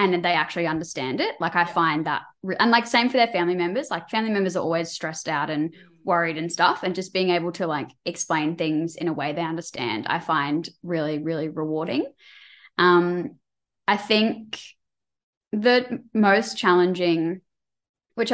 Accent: Australian